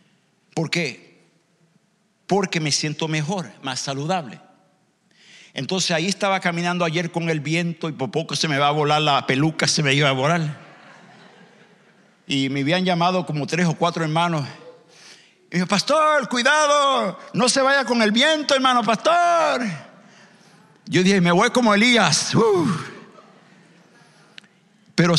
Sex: male